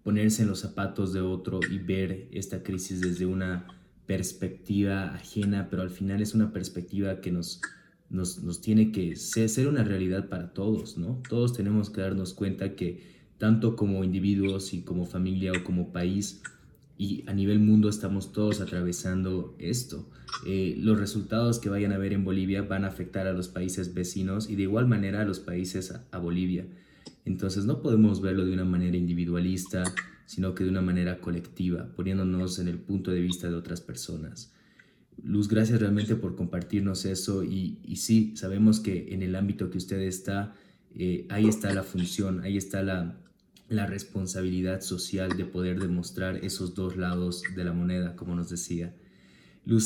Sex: male